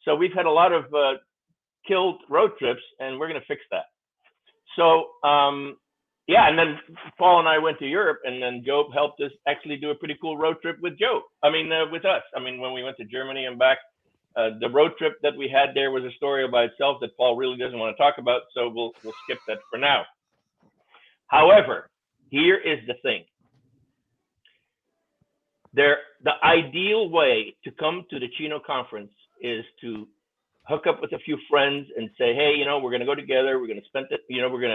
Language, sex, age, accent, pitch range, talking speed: English, male, 50-69, American, 130-185 Hz, 215 wpm